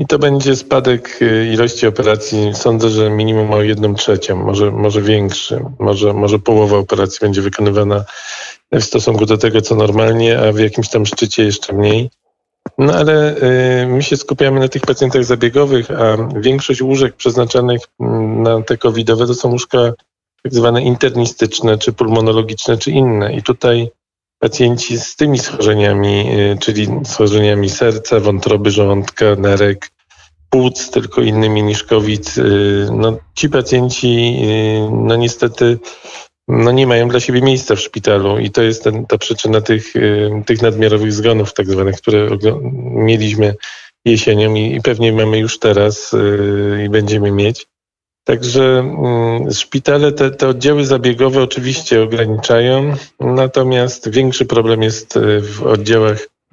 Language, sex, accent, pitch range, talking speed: Polish, male, native, 105-125 Hz, 135 wpm